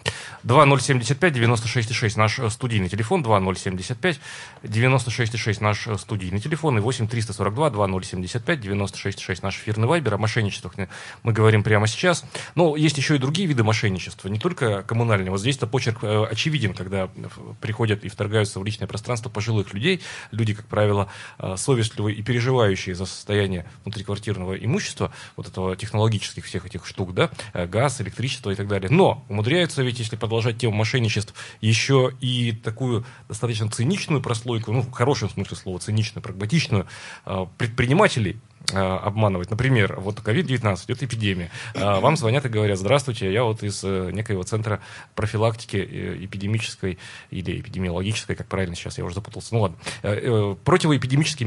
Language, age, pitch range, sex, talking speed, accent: Russian, 30-49, 100-125 Hz, male, 150 wpm, native